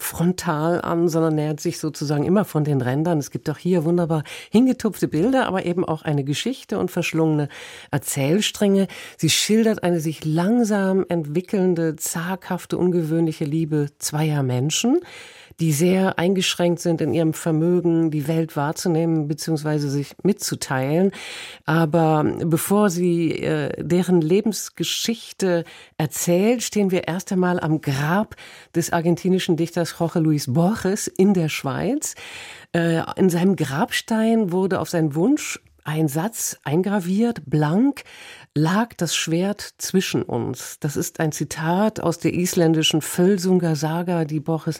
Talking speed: 130 wpm